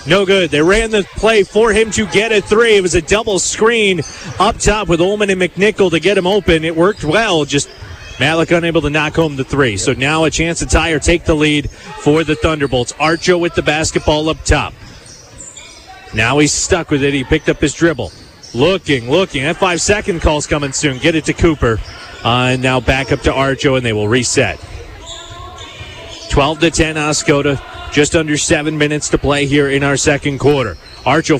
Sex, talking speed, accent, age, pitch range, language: male, 200 wpm, American, 30-49, 135-180 Hz, English